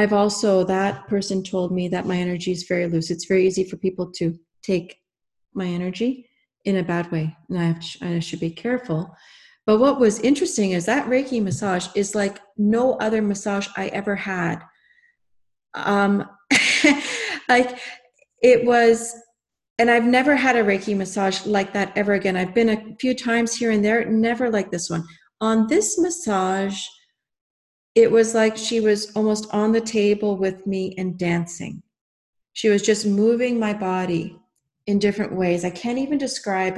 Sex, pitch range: female, 185-230 Hz